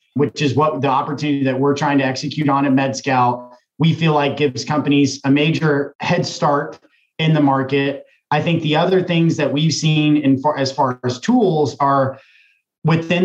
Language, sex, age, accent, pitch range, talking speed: English, male, 30-49, American, 135-150 Hz, 185 wpm